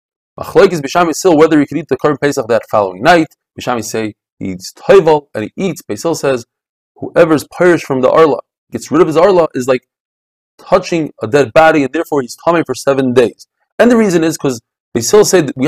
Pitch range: 135-180 Hz